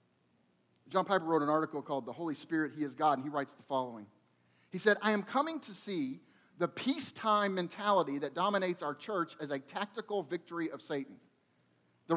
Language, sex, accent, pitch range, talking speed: English, male, American, 165-220 Hz, 185 wpm